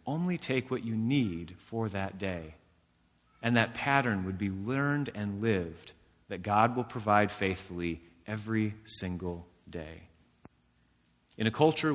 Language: English